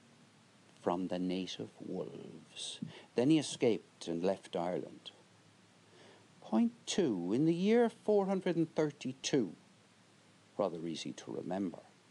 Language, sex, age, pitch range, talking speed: English, male, 60-79, 125-170 Hz, 100 wpm